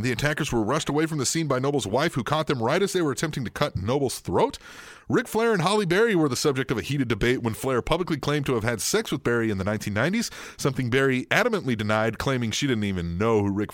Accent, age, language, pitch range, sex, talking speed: American, 30-49, English, 115-170 Hz, male, 260 wpm